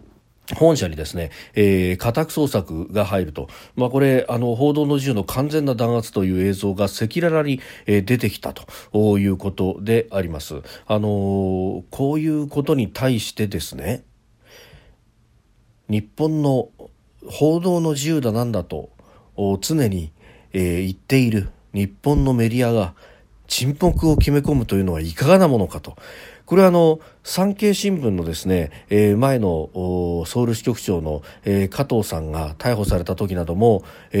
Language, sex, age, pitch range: Japanese, male, 40-59, 95-135 Hz